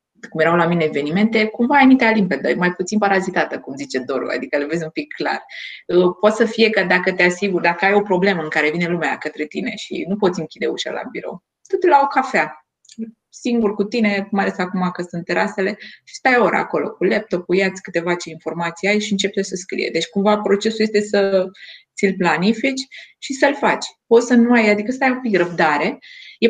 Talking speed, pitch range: 215 wpm, 165-215 Hz